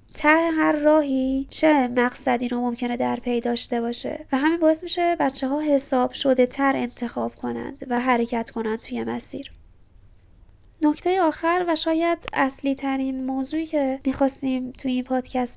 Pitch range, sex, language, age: 255-295 Hz, female, Persian, 20-39